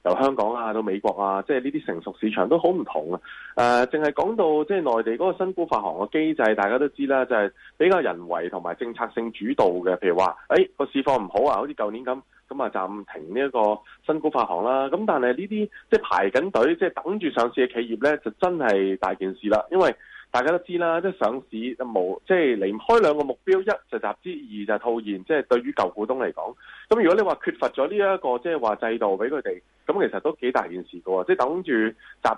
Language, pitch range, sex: Chinese, 110-170 Hz, male